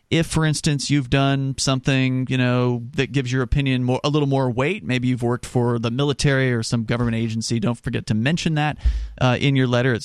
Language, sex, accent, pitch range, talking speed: English, male, American, 110-140 Hz, 220 wpm